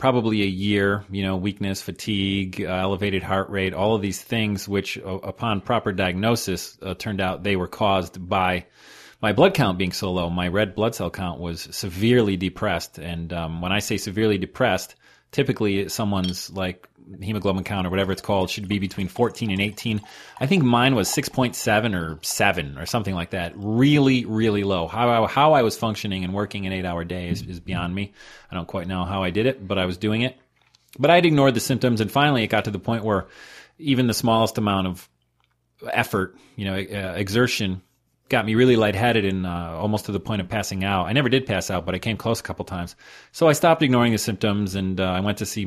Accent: American